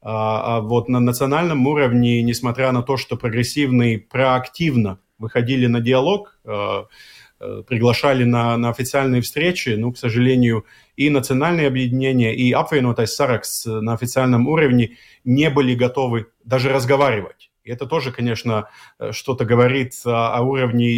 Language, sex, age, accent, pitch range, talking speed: Russian, male, 30-49, native, 120-135 Hz, 125 wpm